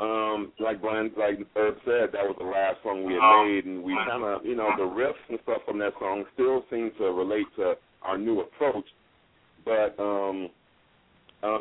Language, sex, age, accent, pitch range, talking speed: English, male, 40-59, American, 90-115 Hz, 190 wpm